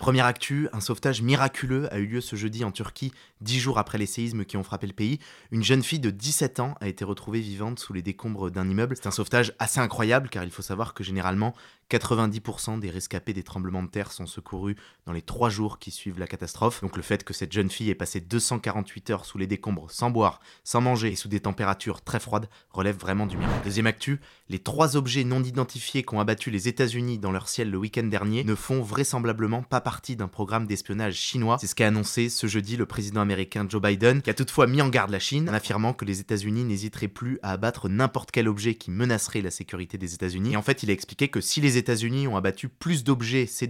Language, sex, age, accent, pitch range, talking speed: French, male, 20-39, French, 100-125 Hz, 240 wpm